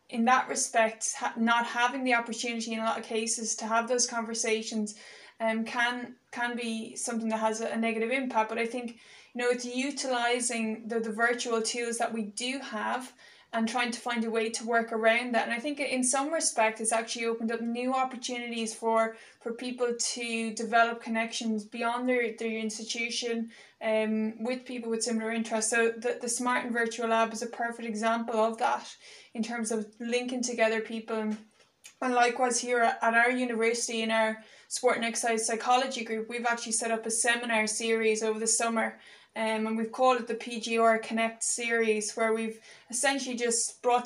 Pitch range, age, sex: 225-240 Hz, 20-39, female